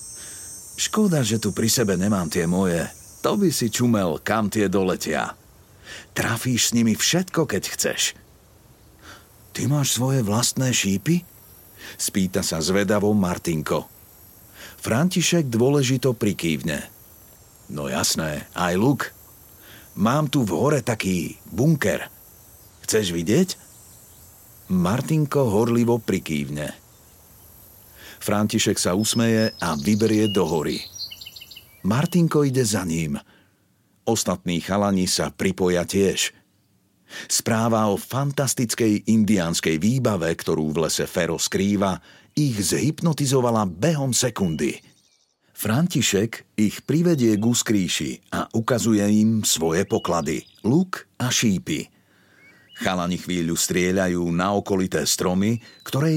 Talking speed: 105 wpm